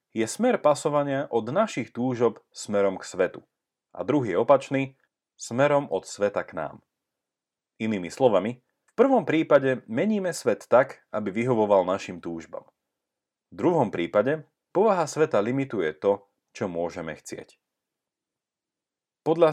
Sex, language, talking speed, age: male, Slovak, 125 wpm, 30-49